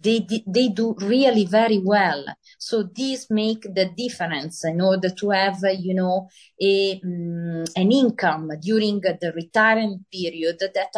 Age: 30-49